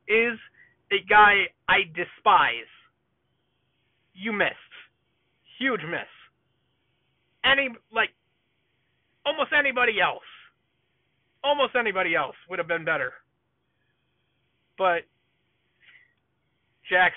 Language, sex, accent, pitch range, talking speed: English, male, American, 145-205 Hz, 80 wpm